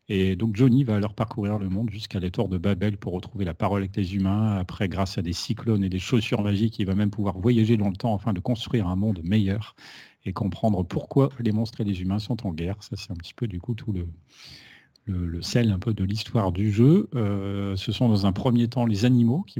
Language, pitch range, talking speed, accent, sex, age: French, 95-115 Hz, 250 wpm, French, male, 40-59